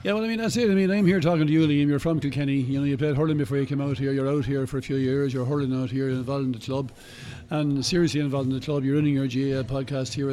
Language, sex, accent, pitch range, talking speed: English, male, Irish, 135-160 Hz, 315 wpm